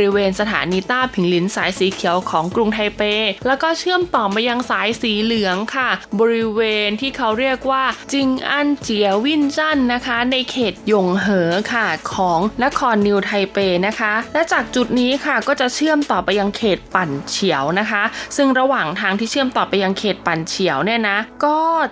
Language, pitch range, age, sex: Thai, 195-255 Hz, 20-39, female